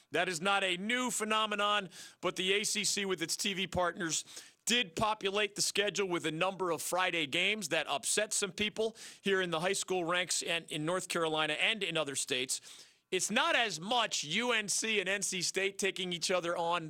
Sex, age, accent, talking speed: male, 40-59, American, 190 wpm